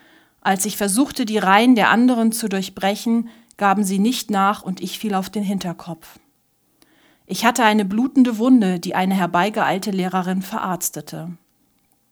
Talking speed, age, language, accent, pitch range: 145 wpm, 40-59, German, German, 185-225 Hz